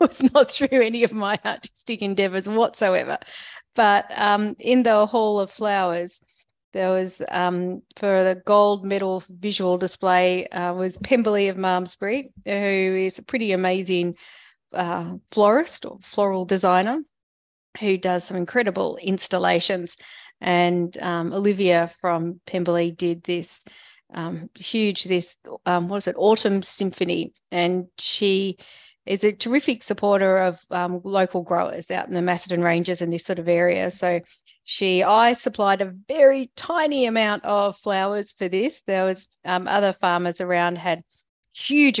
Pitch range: 180-210 Hz